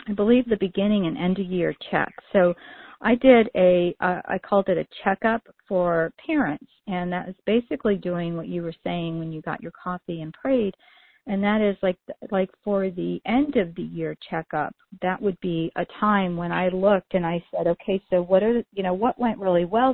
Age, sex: 40-59, female